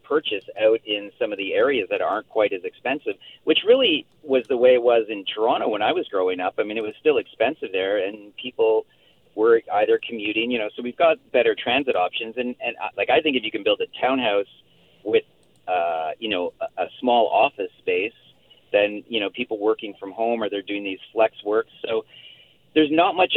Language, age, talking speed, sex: English, 40-59, 215 wpm, male